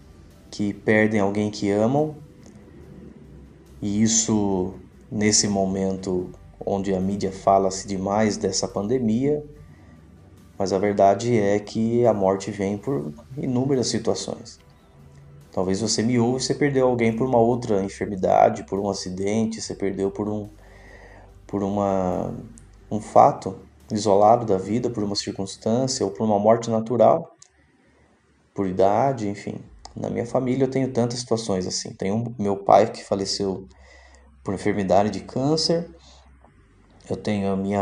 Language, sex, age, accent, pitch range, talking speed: Portuguese, male, 20-39, Brazilian, 95-115 Hz, 135 wpm